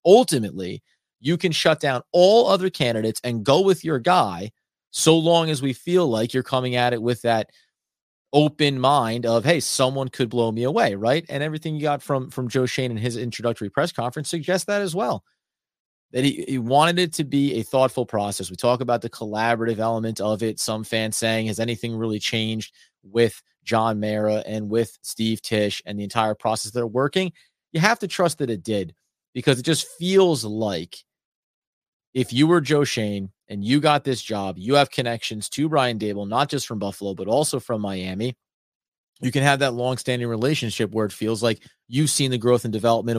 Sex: male